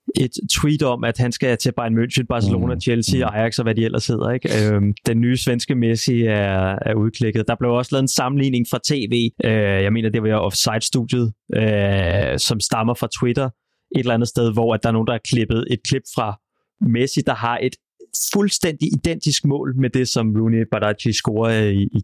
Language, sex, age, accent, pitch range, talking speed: Danish, male, 30-49, native, 110-140 Hz, 195 wpm